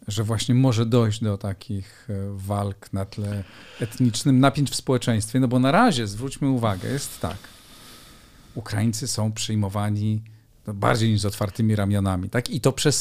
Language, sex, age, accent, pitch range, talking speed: Polish, male, 40-59, native, 110-135 Hz, 155 wpm